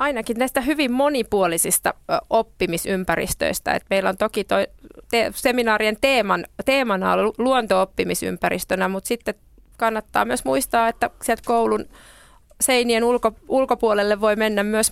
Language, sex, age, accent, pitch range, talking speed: Finnish, female, 30-49, native, 190-225 Hz, 120 wpm